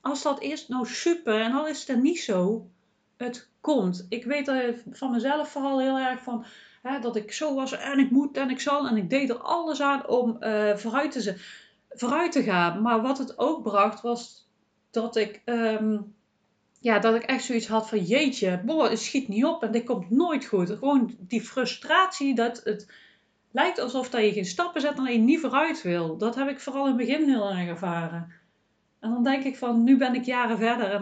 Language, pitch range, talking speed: Dutch, 220-280 Hz, 215 wpm